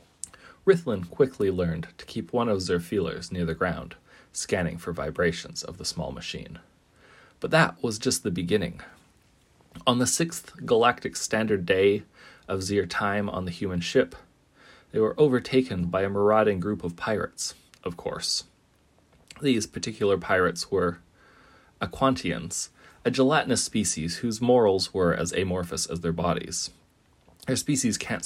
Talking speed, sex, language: 145 wpm, male, English